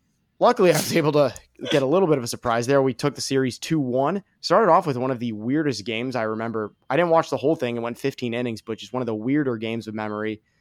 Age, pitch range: 20-39, 115-145 Hz